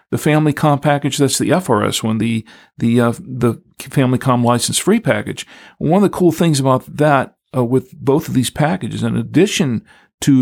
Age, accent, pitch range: 50-69, American, 115-140 Hz